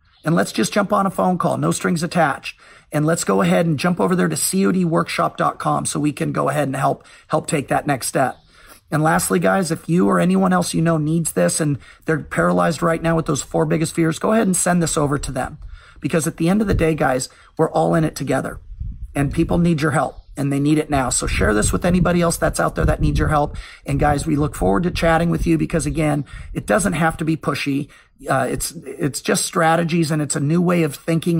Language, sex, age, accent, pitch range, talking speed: English, male, 40-59, American, 140-170 Hz, 245 wpm